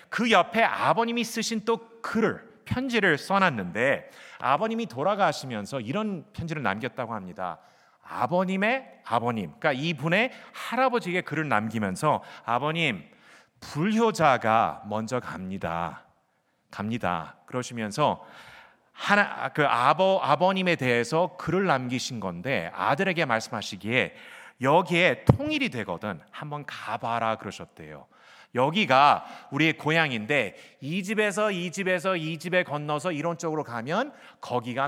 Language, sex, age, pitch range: Korean, male, 30-49, 120-195 Hz